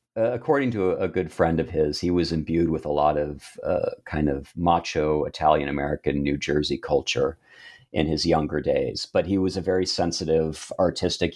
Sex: male